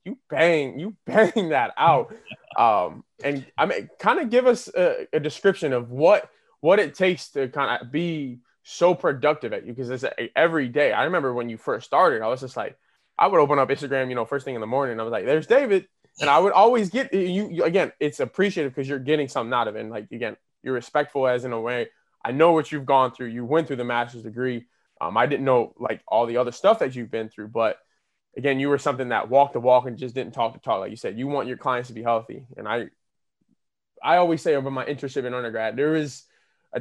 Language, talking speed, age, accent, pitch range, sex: English, 245 wpm, 20-39, American, 125-165 Hz, male